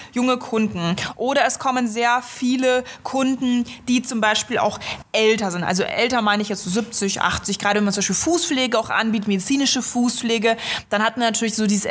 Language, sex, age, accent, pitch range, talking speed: German, female, 20-39, German, 220-265 Hz, 185 wpm